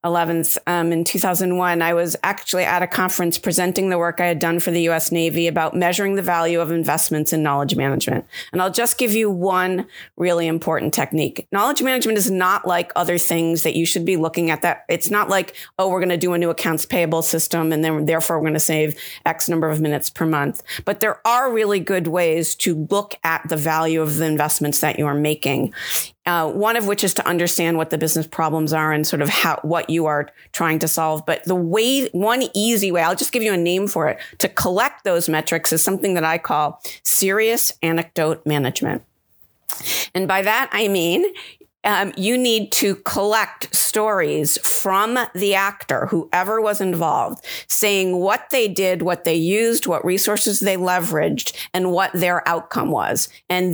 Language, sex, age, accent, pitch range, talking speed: English, female, 40-59, American, 165-195 Hz, 200 wpm